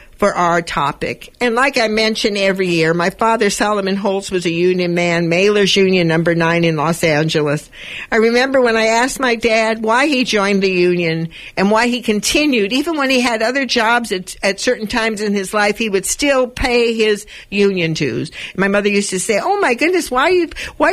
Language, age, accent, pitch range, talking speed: English, 60-79, American, 170-230 Hz, 205 wpm